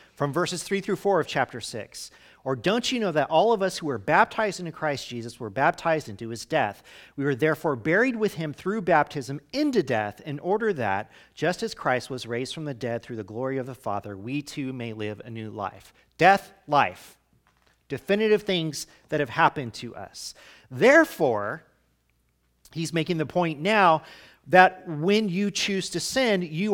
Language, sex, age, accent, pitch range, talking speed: English, male, 40-59, American, 125-190 Hz, 185 wpm